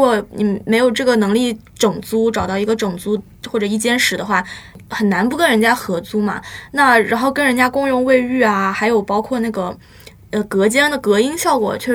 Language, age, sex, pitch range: Chinese, 20-39, female, 205-255 Hz